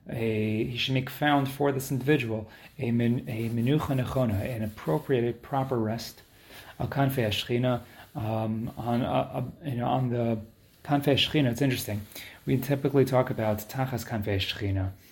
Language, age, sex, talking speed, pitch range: English, 30-49, male, 155 wpm, 110-135 Hz